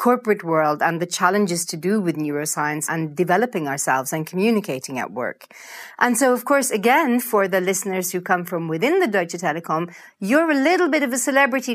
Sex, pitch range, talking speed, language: female, 180-255 Hz, 195 wpm, English